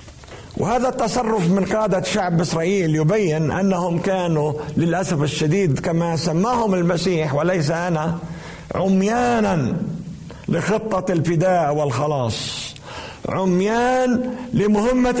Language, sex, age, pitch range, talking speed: Arabic, male, 50-69, 175-220 Hz, 85 wpm